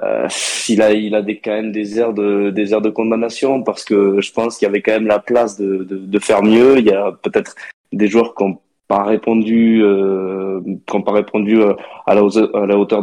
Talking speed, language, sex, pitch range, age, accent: 240 wpm, French, male, 100-110 Hz, 20-39, French